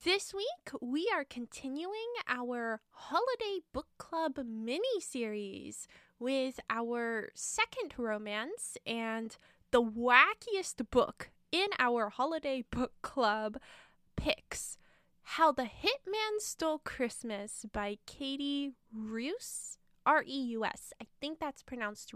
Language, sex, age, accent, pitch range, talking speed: English, female, 10-29, American, 225-320 Hz, 100 wpm